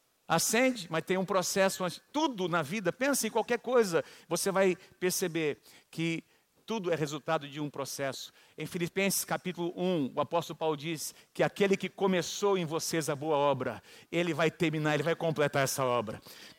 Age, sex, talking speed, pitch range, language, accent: 50-69, male, 175 wpm, 175-225 Hz, Portuguese, Brazilian